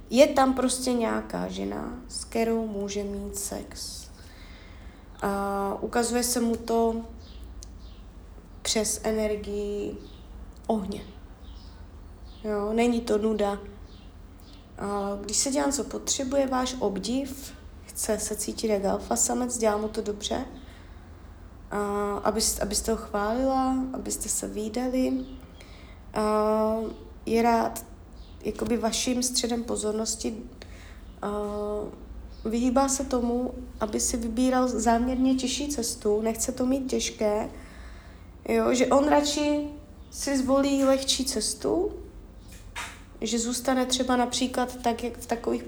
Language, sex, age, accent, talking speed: Czech, female, 20-39, native, 110 wpm